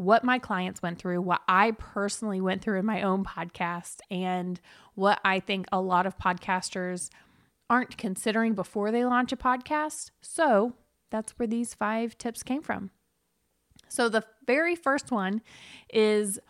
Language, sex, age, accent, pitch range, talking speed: English, female, 20-39, American, 190-235 Hz, 155 wpm